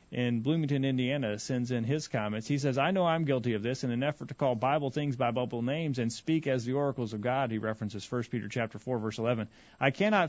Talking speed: 245 wpm